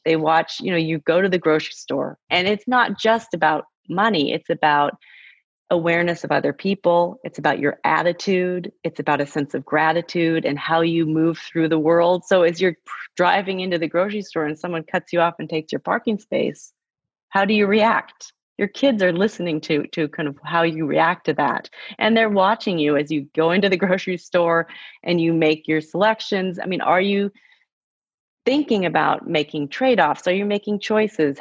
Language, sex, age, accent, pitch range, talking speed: English, female, 30-49, American, 160-205 Hz, 195 wpm